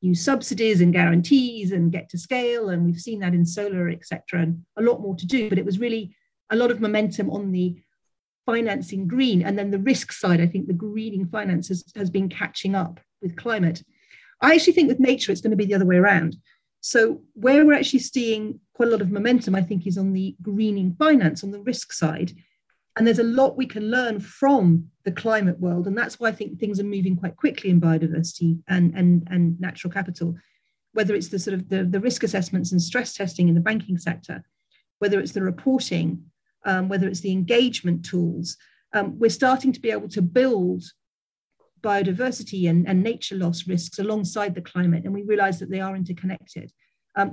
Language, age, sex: English, 40-59, female